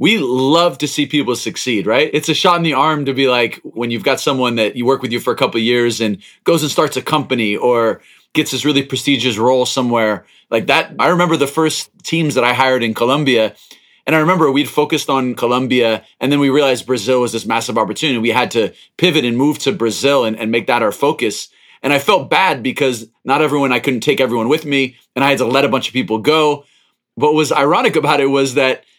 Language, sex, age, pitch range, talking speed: English, male, 30-49, 125-155 Hz, 240 wpm